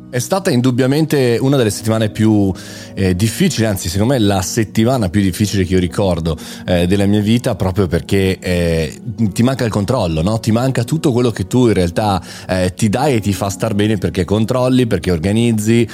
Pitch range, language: 90-115 Hz, Italian